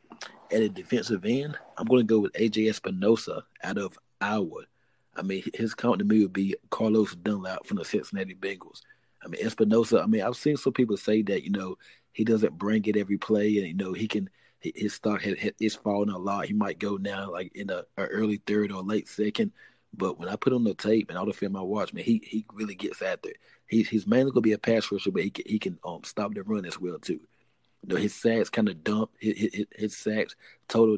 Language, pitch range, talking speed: English, 100-115 Hz, 240 wpm